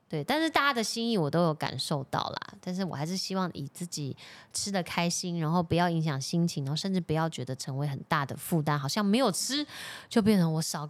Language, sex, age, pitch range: Chinese, female, 20-39, 155-210 Hz